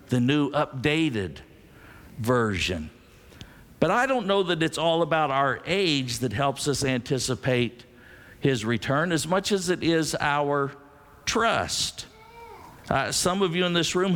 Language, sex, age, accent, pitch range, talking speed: English, male, 50-69, American, 125-175 Hz, 145 wpm